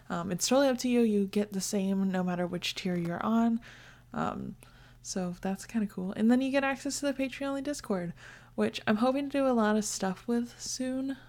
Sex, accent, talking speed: female, American, 230 wpm